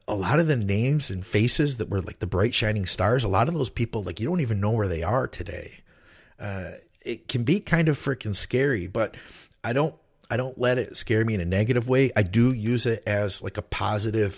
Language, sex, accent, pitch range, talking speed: English, male, American, 95-115 Hz, 240 wpm